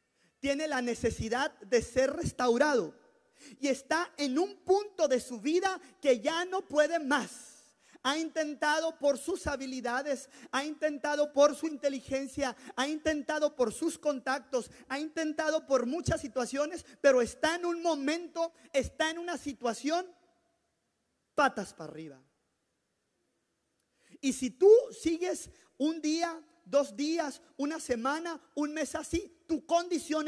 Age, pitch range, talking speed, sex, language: 30-49, 270-330 Hz, 130 wpm, male, Spanish